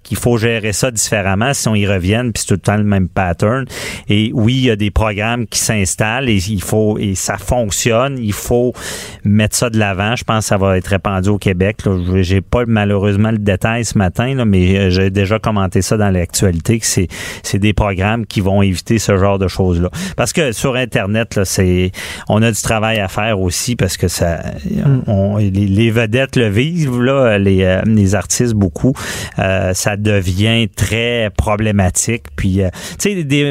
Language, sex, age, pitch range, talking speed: French, male, 40-59, 100-120 Hz, 195 wpm